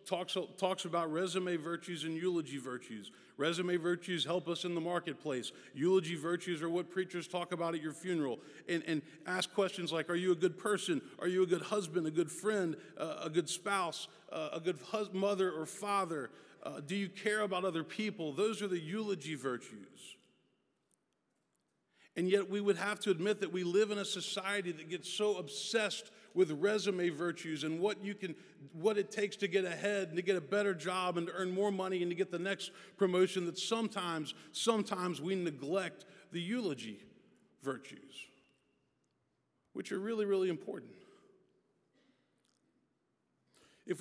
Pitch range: 160-195 Hz